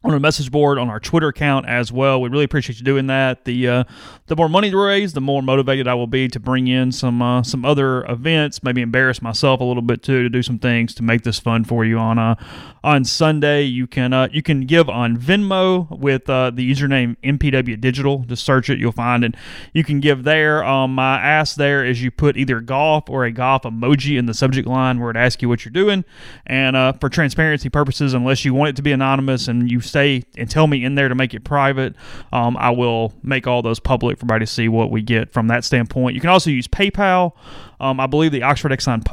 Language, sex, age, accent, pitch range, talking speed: English, male, 30-49, American, 125-145 Hz, 240 wpm